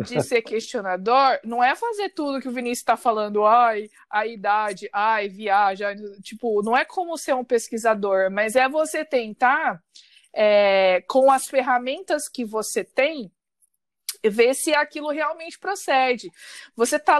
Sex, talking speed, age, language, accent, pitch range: female, 145 wpm, 20-39, Portuguese, Brazilian, 215-285 Hz